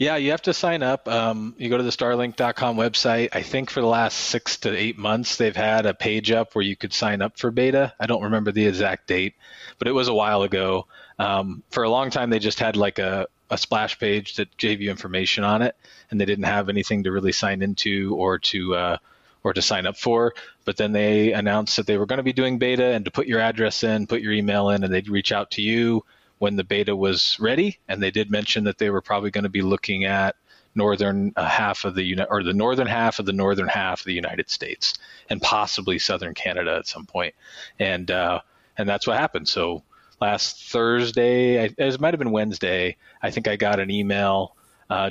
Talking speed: 230 wpm